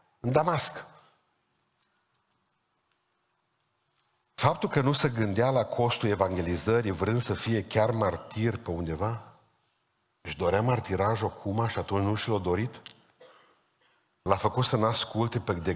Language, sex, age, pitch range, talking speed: Romanian, male, 50-69, 115-155 Hz, 125 wpm